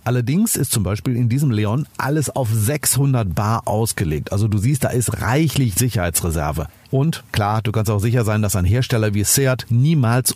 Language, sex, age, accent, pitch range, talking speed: German, male, 50-69, German, 105-140 Hz, 185 wpm